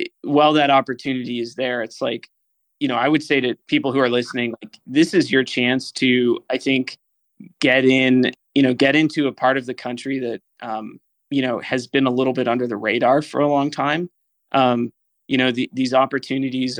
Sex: male